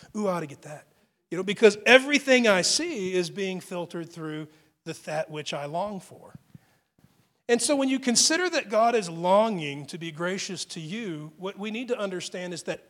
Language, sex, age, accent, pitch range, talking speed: English, male, 40-59, American, 155-205 Hz, 200 wpm